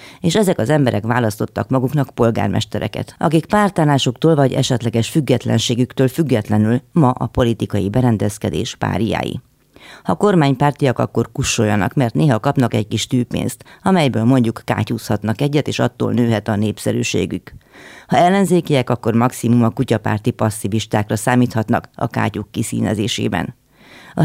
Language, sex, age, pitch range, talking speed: Hungarian, female, 30-49, 110-140 Hz, 120 wpm